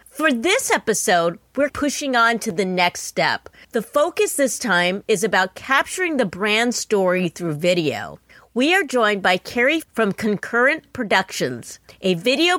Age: 40-59